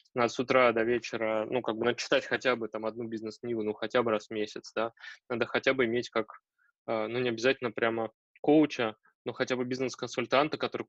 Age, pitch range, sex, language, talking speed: 20-39, 110-130 Hz, male, Russian, 200 wpm